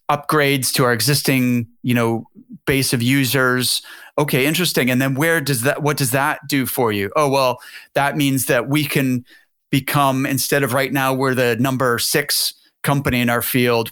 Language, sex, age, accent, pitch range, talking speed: English, male, 30-49, American, 125-145 Hz, 180 wpm